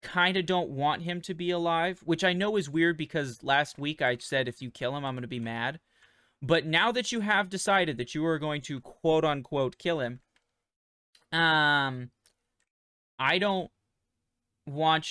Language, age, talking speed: English, 20-39, 185 wpm